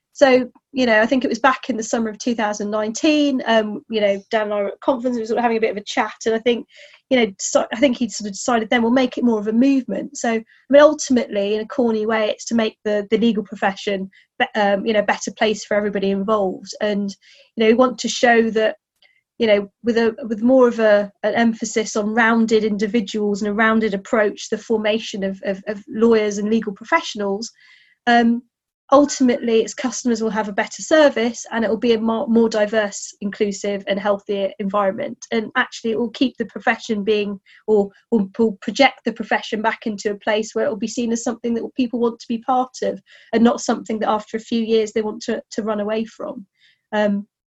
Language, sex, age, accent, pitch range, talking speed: English, female, 30-49, British, 210-245 Hz, 225 wpm